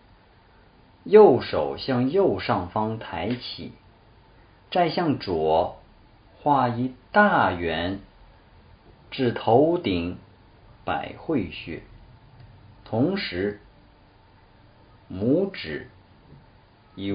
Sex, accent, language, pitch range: male, native, Chinese, 100-115 Hz